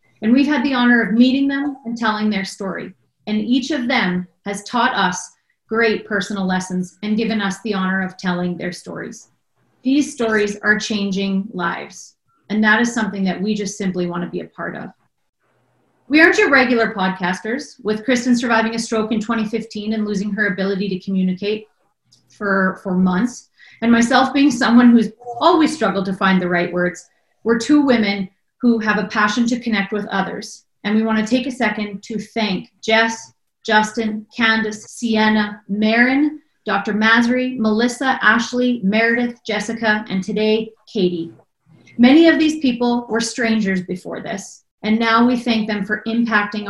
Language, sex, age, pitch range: English, female, 30-49, 195-240 Hz